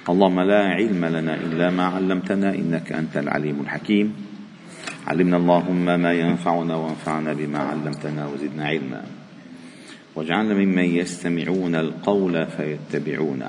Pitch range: 85-105 Hz